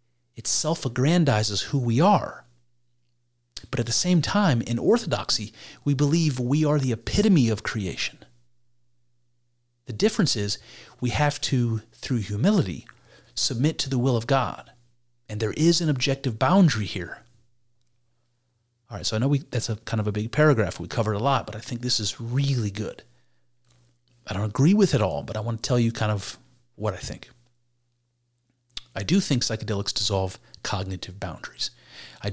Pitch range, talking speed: 105-125 Hz, 165 wpm